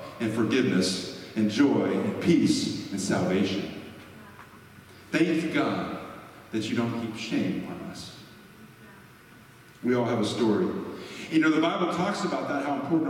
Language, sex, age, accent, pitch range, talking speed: English, male, 50-69, American, 145-220 Hz, 140 wpm